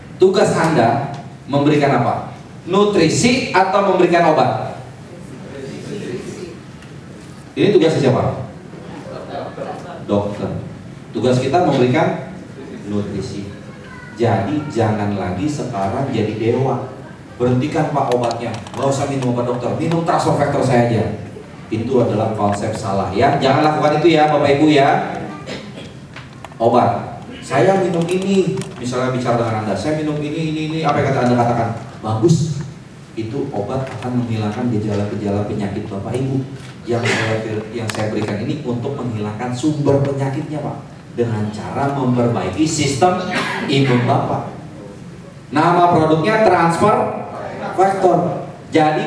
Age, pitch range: 30-49, 115-160 Hz